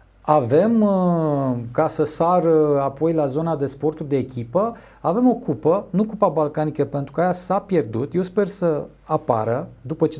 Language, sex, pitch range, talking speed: Romanian, male, 135-175 Hz, 165 wpm